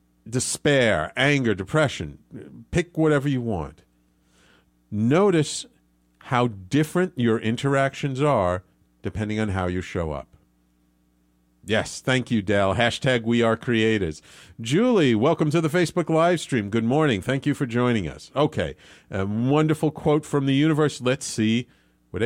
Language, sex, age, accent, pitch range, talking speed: English, male, 50-69, American, 95-150 Hz, 135 wpm